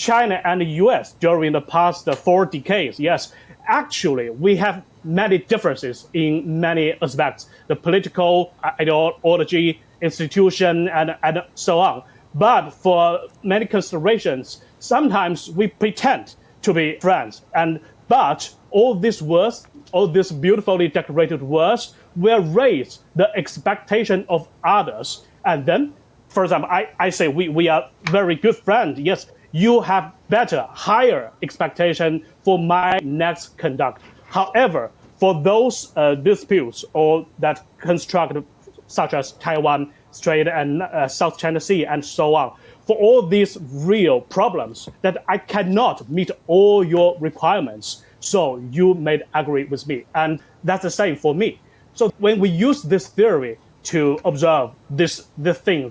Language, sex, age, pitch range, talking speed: English, male, 30-49, 155-195 Hz, 140 wpm